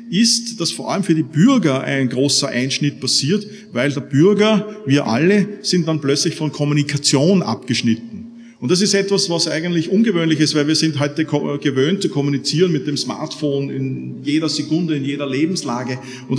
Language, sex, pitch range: German, male, 140-185 Hz